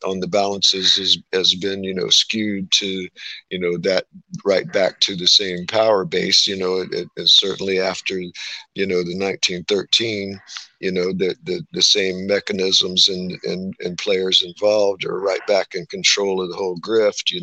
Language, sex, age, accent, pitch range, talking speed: English, male, 50-69, American, 90-100 Hz, 175 wpm